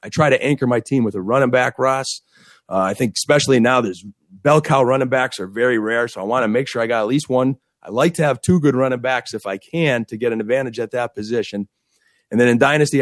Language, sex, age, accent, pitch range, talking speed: English, male, 30-49, American, 115-135 Hz, 265 wpm